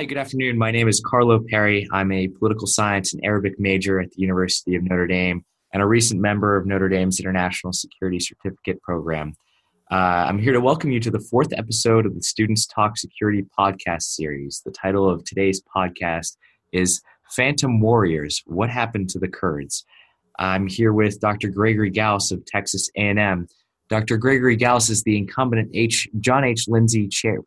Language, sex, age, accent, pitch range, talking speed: English, male, 20-39, American, 95-115 Hz, 180 wpm